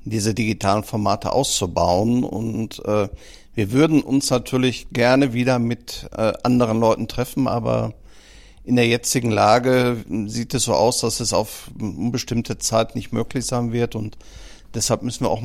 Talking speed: 155 wpm